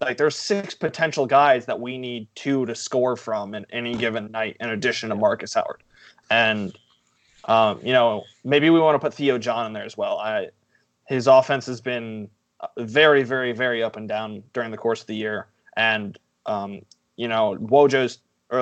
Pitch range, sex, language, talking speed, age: 110-140 Hz, male, English, 190 wpm, 20-39